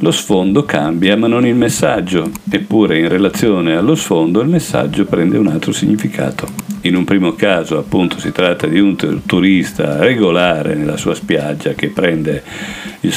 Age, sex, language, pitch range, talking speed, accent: 50-69, male, Italian, 80-110 Hz, 160 wpm, native